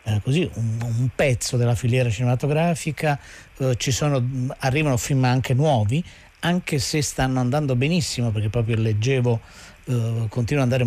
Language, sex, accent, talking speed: Italian, male, native, 150 wpm